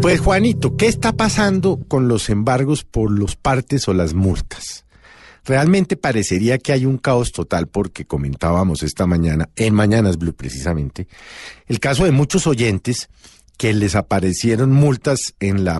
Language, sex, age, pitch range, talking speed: Spanish, male, 50-69, 90-135 Hz, 150 wpm